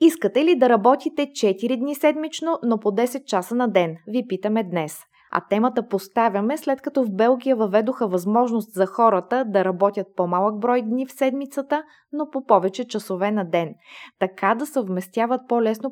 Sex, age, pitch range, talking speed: female, 20-39, 195-250 Hz, 165 wpm